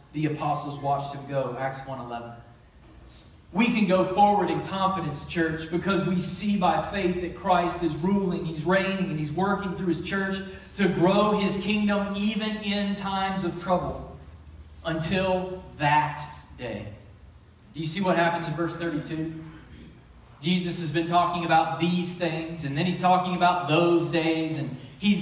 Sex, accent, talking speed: male, American, 160 wpm